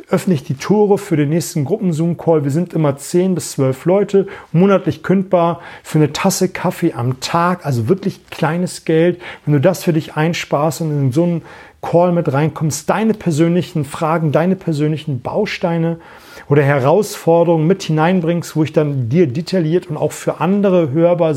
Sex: male